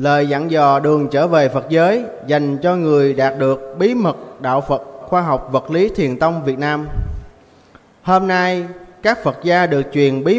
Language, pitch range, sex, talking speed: Vietnamese, 135-175 Hz, male, 190 wpm